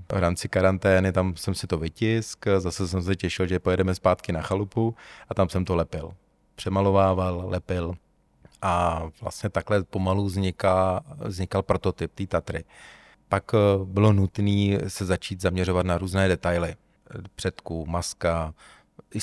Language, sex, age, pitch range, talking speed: Czech, male, 30-49, 90-100 Hz, 140 wpm